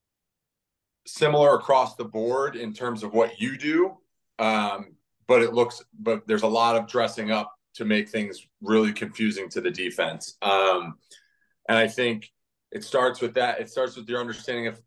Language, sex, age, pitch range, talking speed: English, male, 30-49, 110-125 Hz, 175 wpm